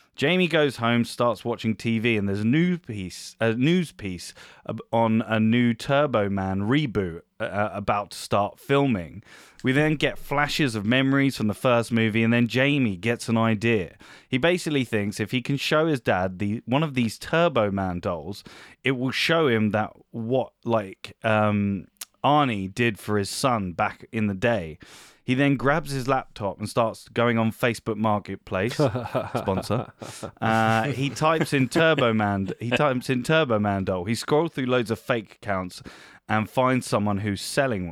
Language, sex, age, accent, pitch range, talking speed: English, male, 20-39, British, 105-130 Hz, 170 wpm